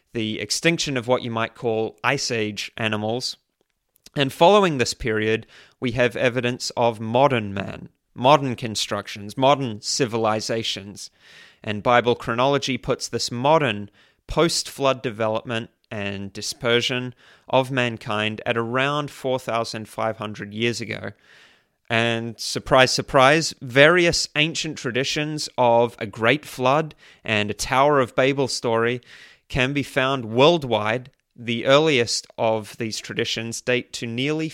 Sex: male